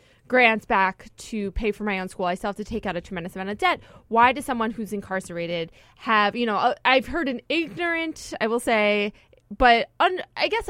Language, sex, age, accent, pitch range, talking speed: English, female, 20-39, American, 205-255 Hz, 205 wpm